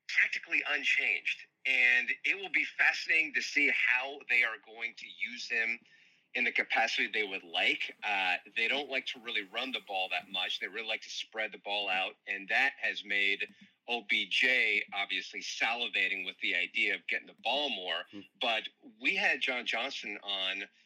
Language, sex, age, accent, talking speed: English, male, 40-59, American, 180 wpm